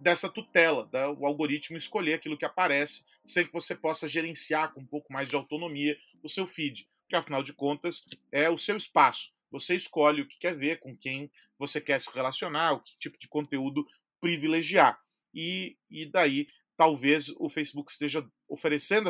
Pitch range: 140-170 Hz